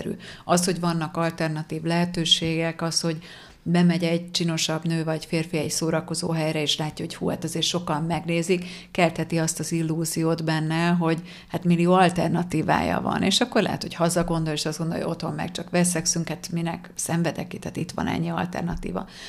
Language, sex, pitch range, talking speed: Hungarian, female, 165-180 Hz, 175 wpm